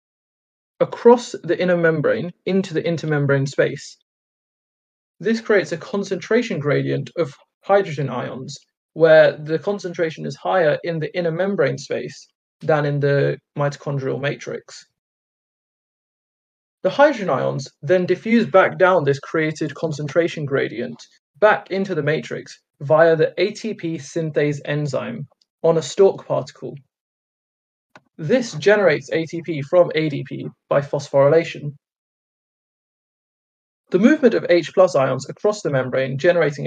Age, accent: 30-49, British